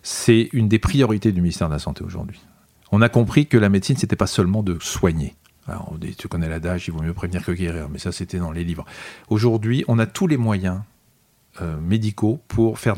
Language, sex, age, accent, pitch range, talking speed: French, male, 40-59, French, 90-115 Hz, 220 wpm